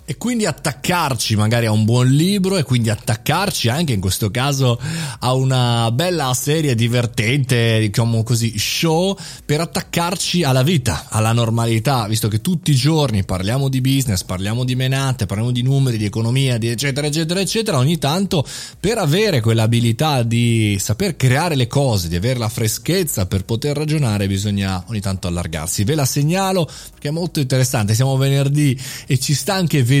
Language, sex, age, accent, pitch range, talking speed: Italian, male, 30-49, native, 110-150 Hz, 170 wpm